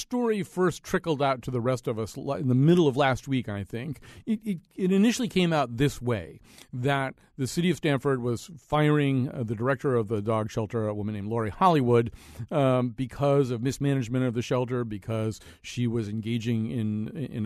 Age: 50-69